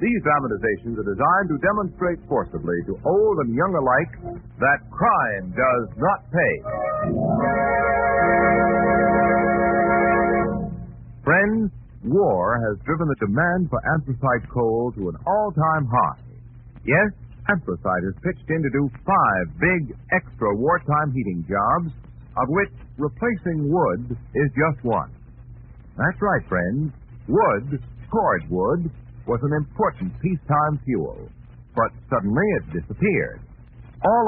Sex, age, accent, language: male, 60-79, American, English